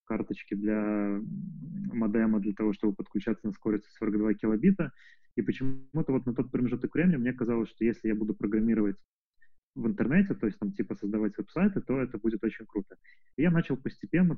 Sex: male